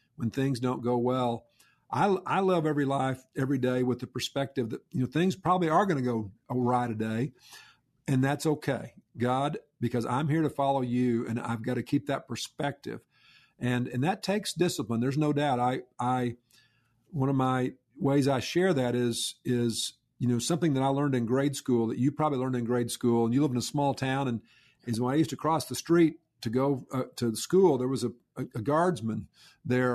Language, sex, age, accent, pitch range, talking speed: English, male, 50-69, American, 120-150 Hz, 215 wpm